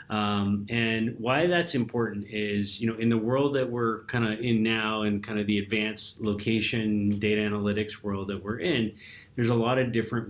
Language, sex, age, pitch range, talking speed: English, male, 30-49, 105-115 Hz, 200 wpm